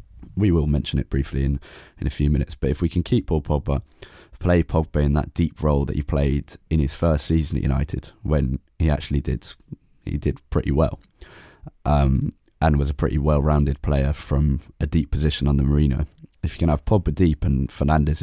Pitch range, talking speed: 70-85 Hz, 200 wpm